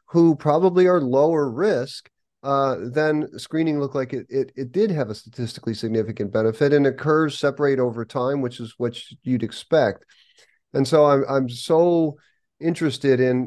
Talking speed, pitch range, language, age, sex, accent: 160 wpm, 120-150 Hz, English, 40-59, male, American